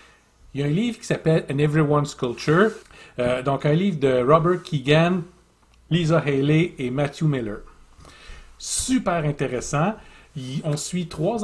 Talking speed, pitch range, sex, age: 150 wpm, 140-175 Hz, male, 40-59